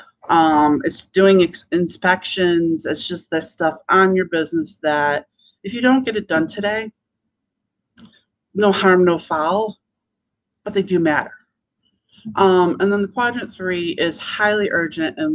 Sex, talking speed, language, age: female, 150 wpm, English, 30-49